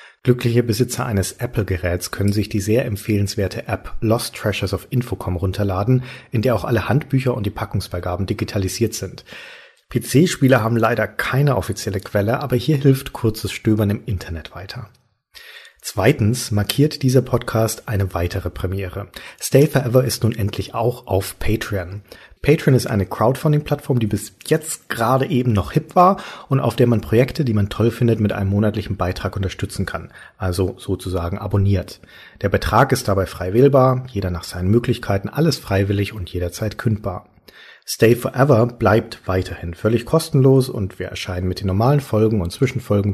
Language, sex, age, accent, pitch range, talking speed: German, male, 40-59, German, 95-125 Hz, 160 wpm